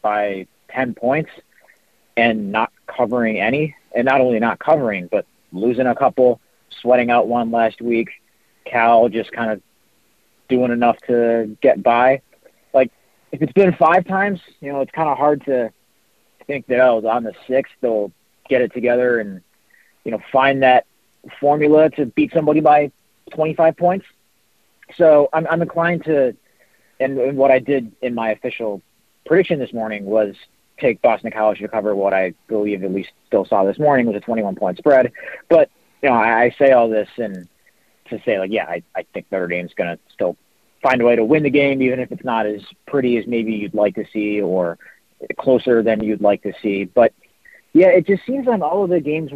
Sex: male